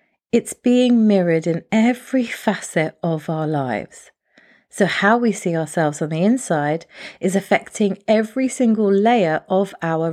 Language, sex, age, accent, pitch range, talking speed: English, female, 30-49, British, 165-230 Hz, 140 wpm